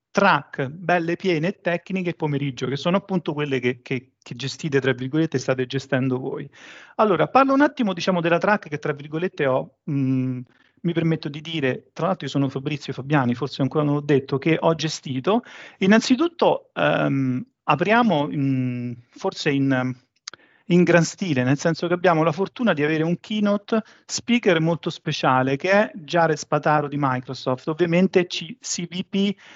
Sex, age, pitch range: male, 40-59, 140-185 Hz